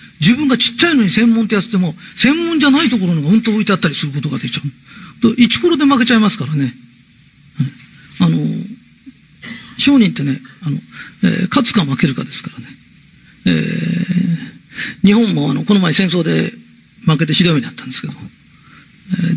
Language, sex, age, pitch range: Japanese, male, 40-59, 155-240 Hz